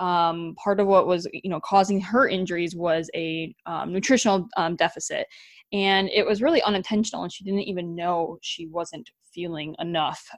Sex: female